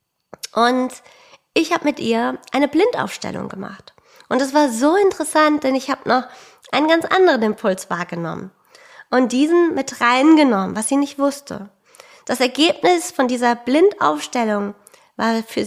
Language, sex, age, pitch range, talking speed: German, female, 20-39, 230-305 Hz, 140 wpm